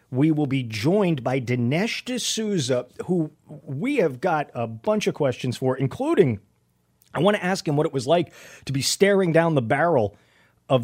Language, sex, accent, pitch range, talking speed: English, male, American, 115-155 Hz, 185 wpm